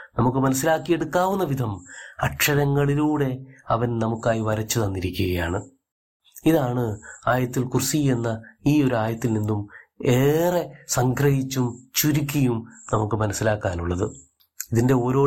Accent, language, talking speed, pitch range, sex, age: native, Malayalam, 90 wpm, 110-140 Hz, male, 30-49